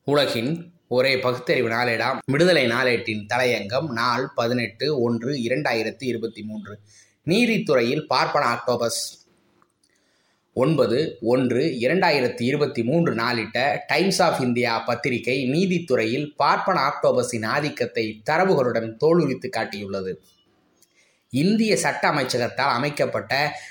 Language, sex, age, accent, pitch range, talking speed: Tamil, male, 20-39, native, 120-165 Hz, 90 wpm